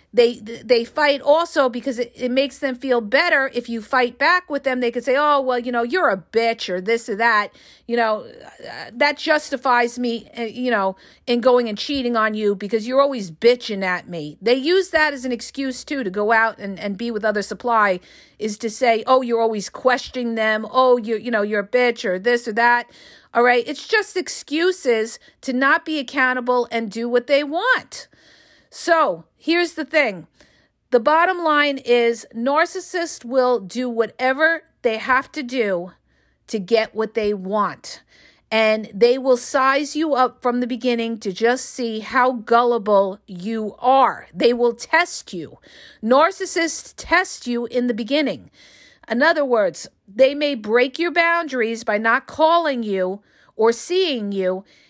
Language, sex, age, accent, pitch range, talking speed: English, female, 40-59, American, 225-275 Hz, 175 wpm